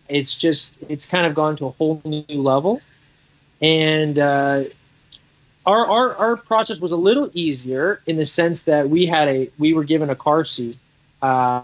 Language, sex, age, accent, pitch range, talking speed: English, male, 30-49, American, 140-160 Hz, 180 wpm